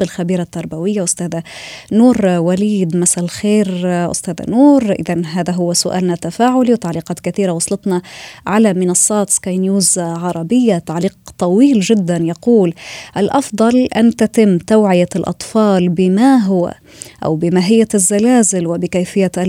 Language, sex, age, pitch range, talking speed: Arabic, female, 20-39, 180-220 Hz, 115 wpm